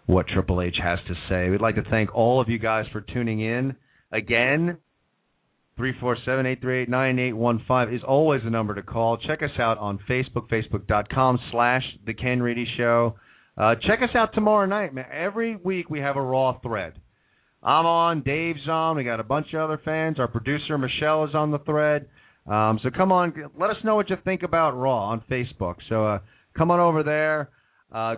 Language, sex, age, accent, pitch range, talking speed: English, male, 40-59, American, 115-160 Hz, 195 wpm